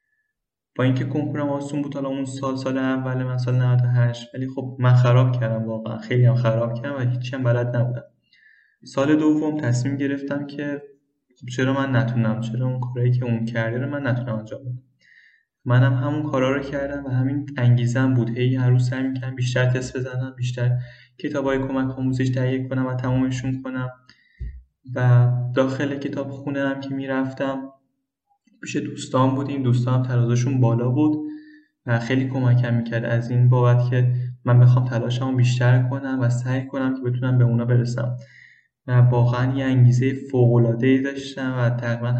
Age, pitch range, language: 20-39, 125-135 Hz, Persian